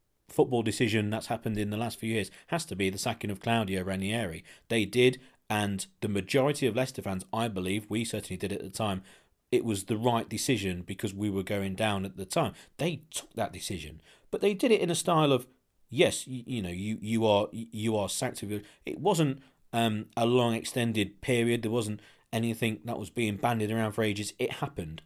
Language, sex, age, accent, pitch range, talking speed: English, male, 40-59, British, 100-130 Hz, 210 wpm